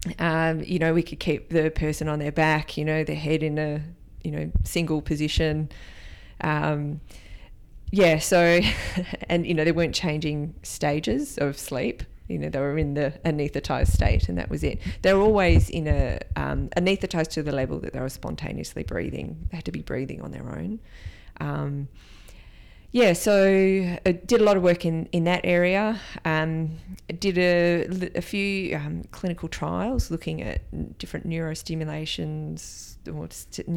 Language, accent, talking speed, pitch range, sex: English, Australian, 170 wpm, 120-170 Hz, female